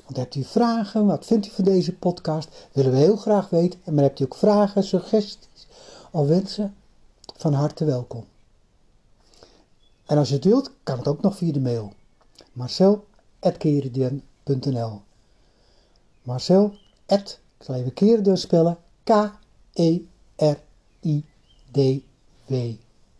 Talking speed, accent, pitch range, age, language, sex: 110 wpm, Dutch, 125-175 Hz, 60-79, Dutch, male